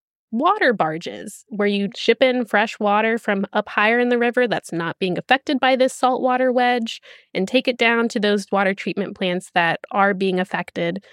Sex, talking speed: female, 190 wpm